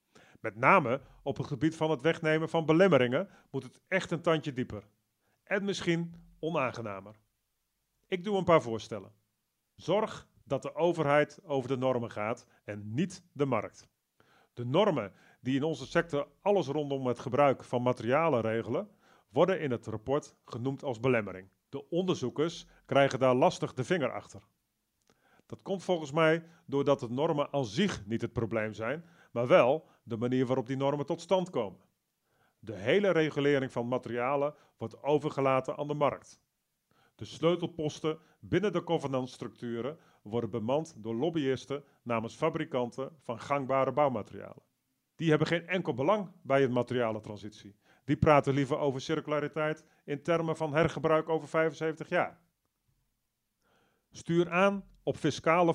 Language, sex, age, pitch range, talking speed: Dutch, male, 40-59, 120-160 Hz, 145 wpm